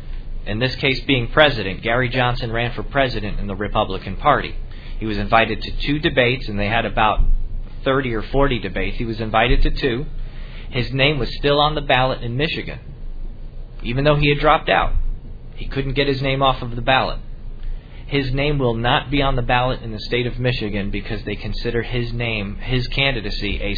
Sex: male